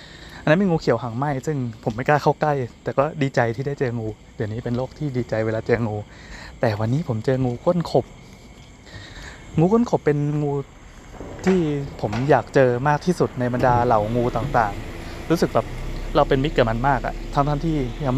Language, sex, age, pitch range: Thai, male, 20-39, 115-145 Hz